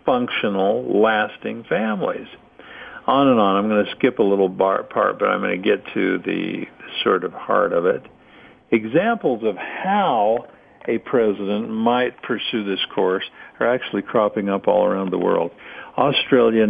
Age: 50-69